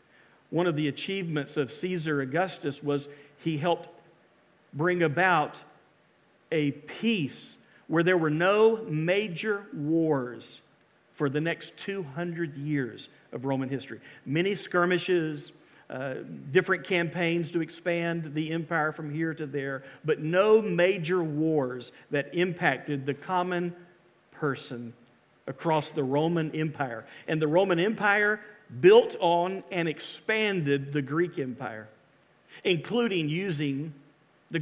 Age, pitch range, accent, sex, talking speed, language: 50-69, 145-185 Hz, American, male, 120 wpm, English